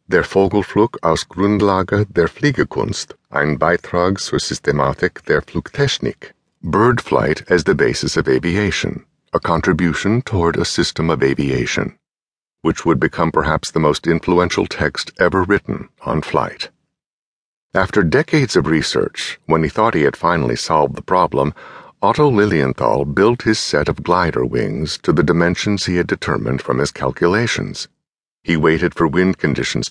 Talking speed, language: 145 wpm, English